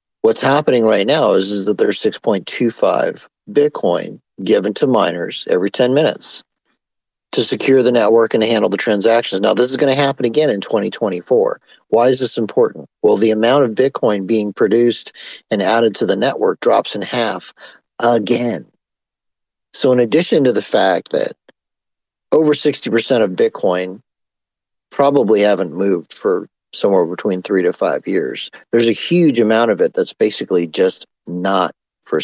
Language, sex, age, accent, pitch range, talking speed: English, male, 50-69, American, 105-140 Hz, 160 wpm